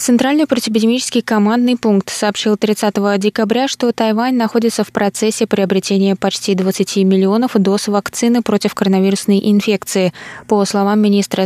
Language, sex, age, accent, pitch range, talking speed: Russian, female, 20-39, native, 190-225 Hz, 125 wpm